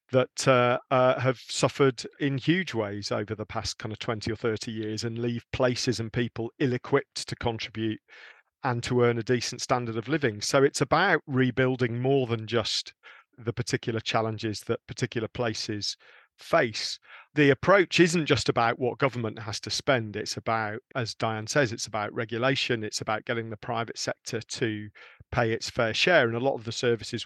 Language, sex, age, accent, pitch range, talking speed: English, male, 40-59, British, 115-135 Hz, 185 wpm